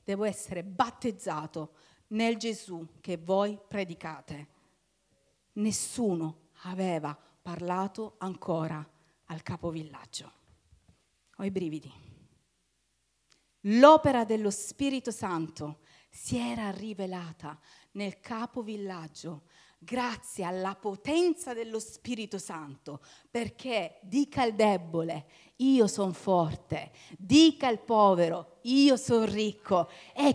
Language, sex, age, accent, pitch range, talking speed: Italian, female, 40-59, native, 175-280 Hz, 90 wpm